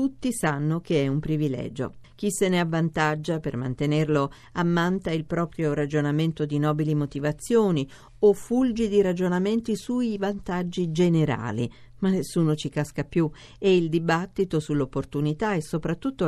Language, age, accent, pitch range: Italian, 50-69, native, 145-190 Hz